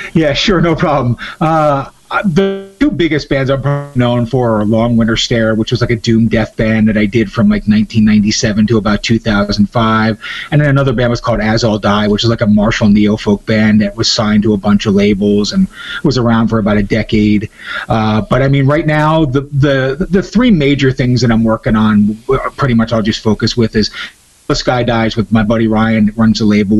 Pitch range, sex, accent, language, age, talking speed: 105-135 Hz, male, American, English, 30-49, 220 wpm